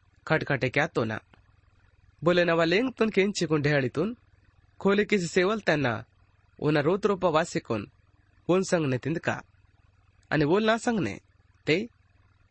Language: Hindi